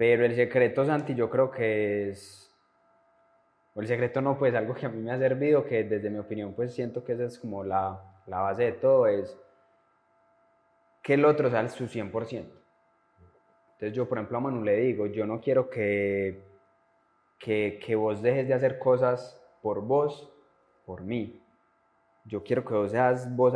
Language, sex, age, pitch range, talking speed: Spanish, male, 20-39, 100-130 Hz, 180 wpm